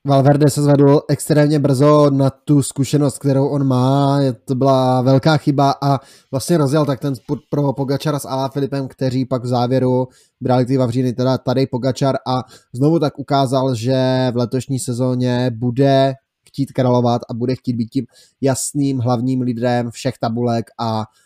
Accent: native